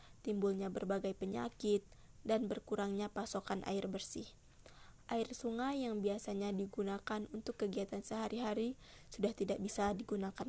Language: Indonesian